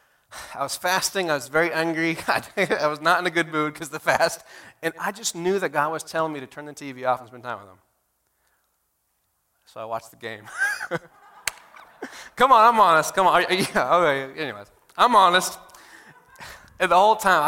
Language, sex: English, male